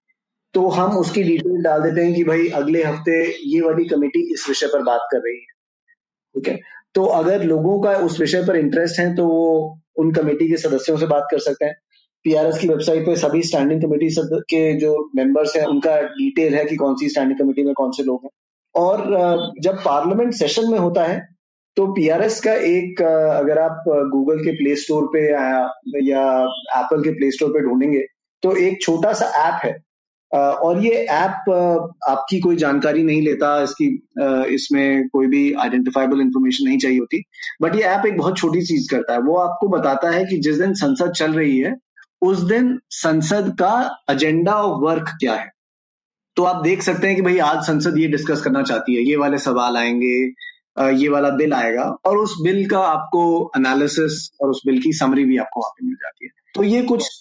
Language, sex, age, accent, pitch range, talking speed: Hindi, male, 20-39, native, 145-185 Hz, 200 wpm